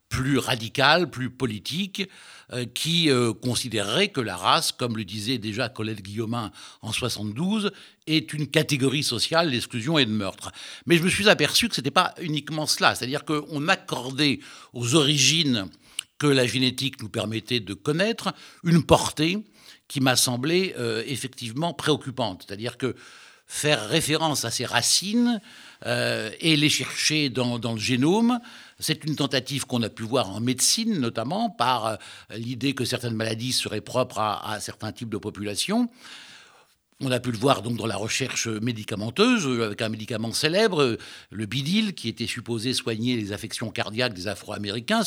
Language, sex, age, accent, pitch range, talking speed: French, male, 60-79, French, 115-155 Hz, 155 wpm